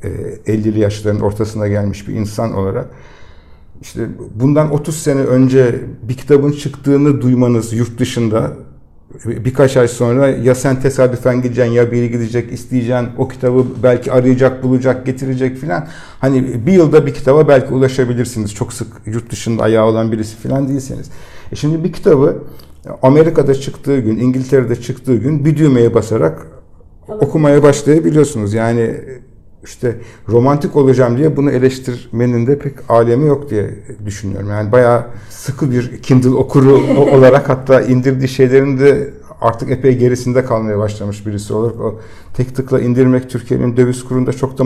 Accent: native